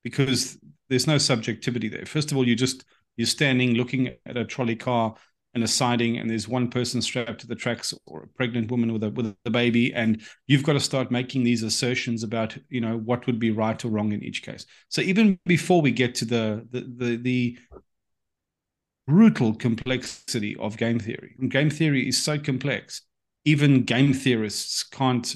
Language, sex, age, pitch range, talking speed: English, male, 30-49, 110-130 Hz, 195 wpm